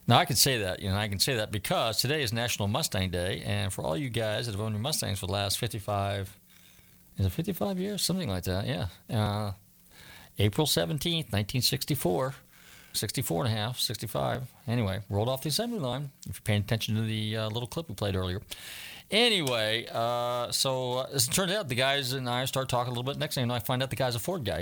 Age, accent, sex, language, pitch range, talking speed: 40-59, American, male, English, 100-140 Hz, 230 wpm